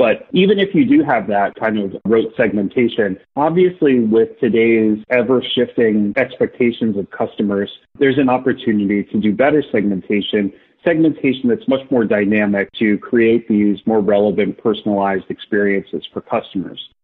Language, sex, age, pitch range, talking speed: English, male, 30-49, 100-125 Hz, 135 wpm